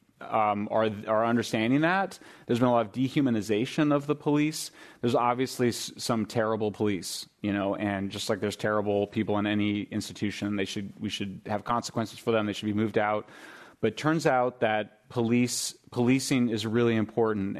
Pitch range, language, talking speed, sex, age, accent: 110-135 Hz, English, 185 wpm, male, 30-49, American